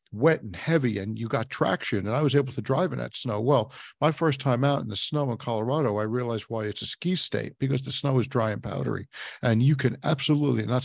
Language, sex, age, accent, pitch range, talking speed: English, male, 50-69, American, 105-135 Hz, 250 wpm